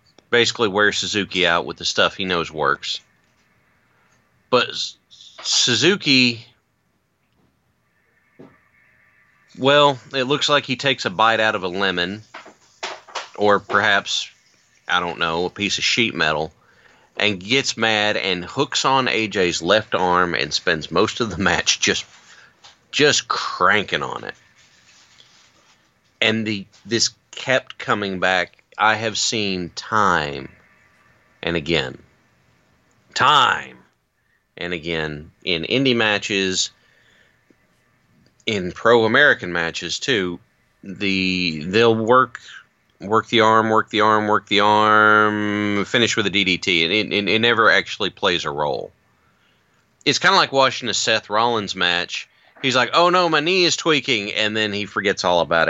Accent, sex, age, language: American, male, 40-59, English